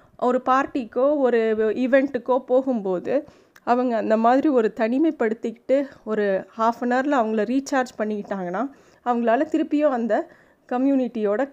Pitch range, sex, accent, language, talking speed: 215-270 Hz, female, native, Tamil, 110 wpm